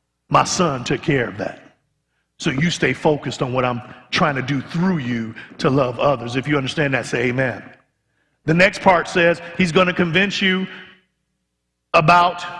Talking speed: 175 wpm